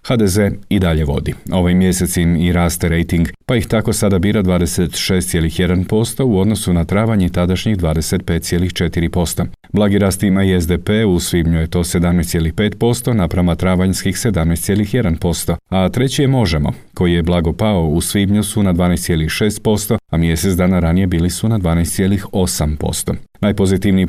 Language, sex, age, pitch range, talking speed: Croatian, male, 40-59, 85-100 Hz, 140 wpm